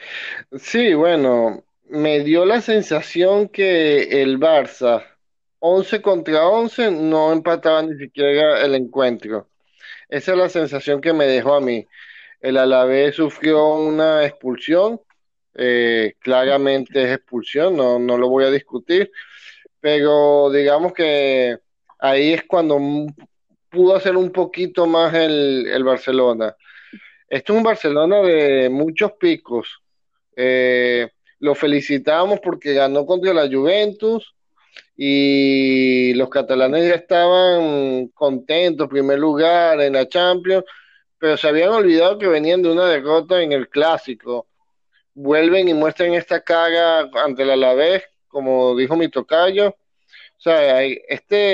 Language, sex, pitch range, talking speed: Spanish, male, 135-175 Hz, 125 wpm